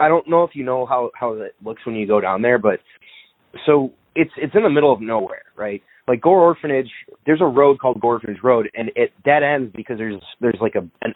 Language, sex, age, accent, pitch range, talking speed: English, male, 20-39, American, 105-135 Hz, 240 wpm